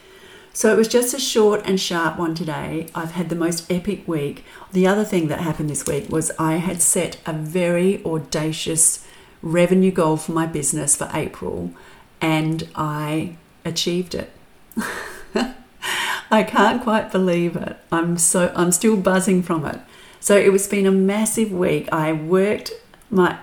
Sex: female